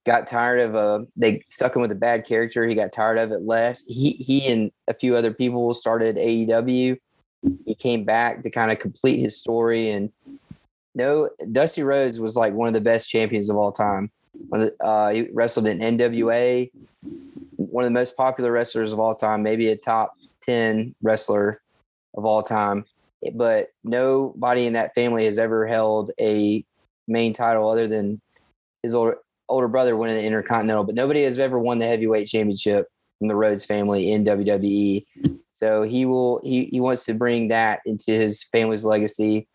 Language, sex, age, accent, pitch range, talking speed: English, male, 20-39, American, 105-120 Hz, 185 wpm